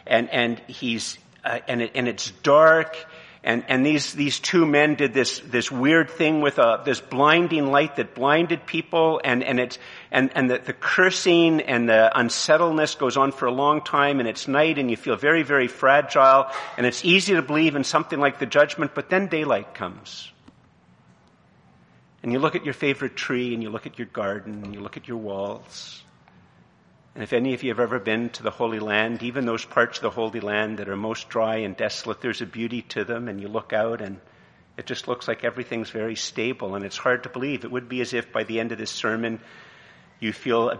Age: 50-69